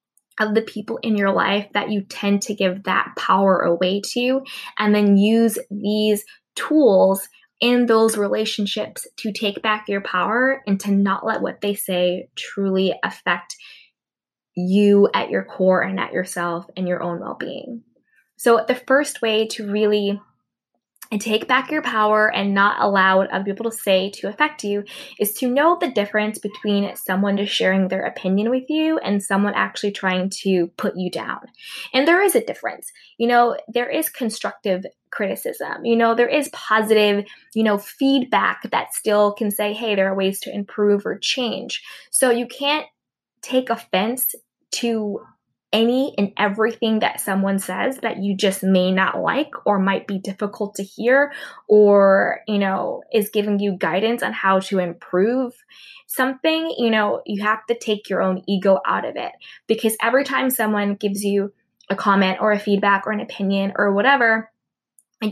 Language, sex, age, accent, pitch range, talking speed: English, female, 20-39, American, 195-235 Hz, 170 wpm